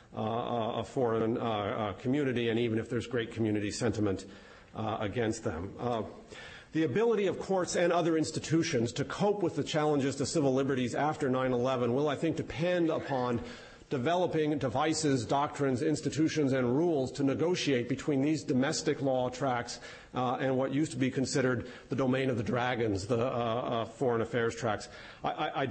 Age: 50-69